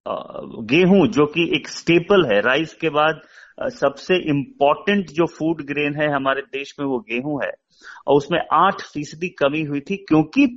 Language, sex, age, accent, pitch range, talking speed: Hindi, male, 30-49, native, 150-195 Hz, 165 wpm